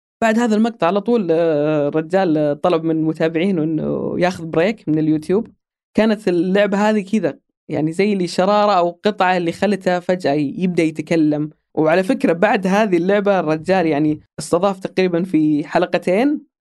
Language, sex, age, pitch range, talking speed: Arabic, female, 20-39, 155-195 Hz, 145 wpm